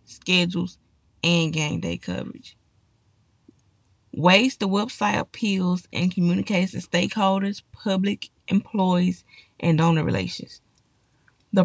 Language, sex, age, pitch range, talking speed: English, female, 20-39, 165-195 Hz, 100 wpm